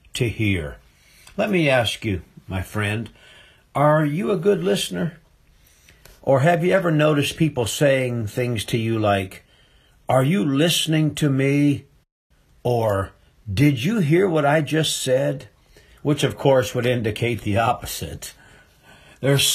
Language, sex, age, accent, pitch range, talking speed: English, male, 60-79, American, 100-140 Hz, 140 wpm